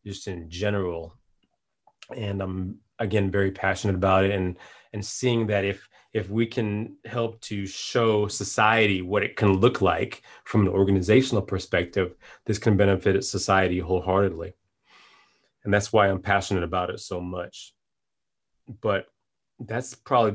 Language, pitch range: English, 95-105 Hz